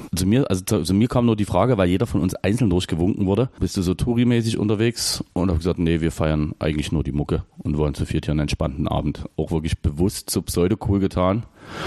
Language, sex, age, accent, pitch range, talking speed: German, male, 40-59, German, 95-125 Hz, 240 wpm